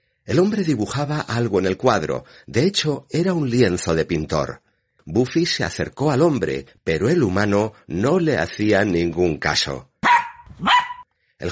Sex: male